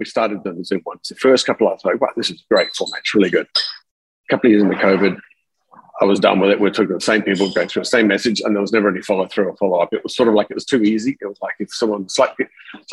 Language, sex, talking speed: English, male, 320 wpm